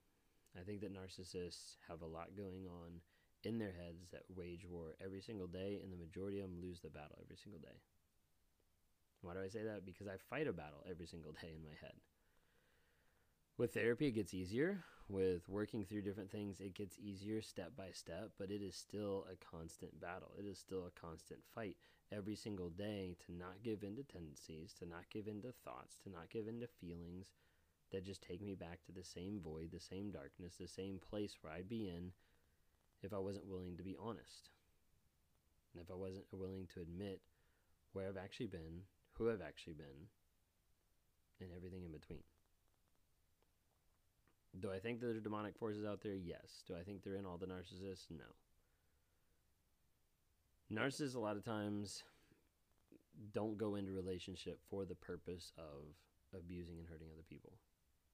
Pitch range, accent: 85-100 Hz, American